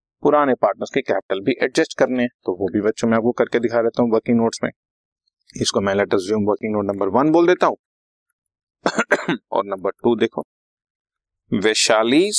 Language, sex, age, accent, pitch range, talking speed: Hindi, male, 30-49, native, 105-130 Hz, 160 wpm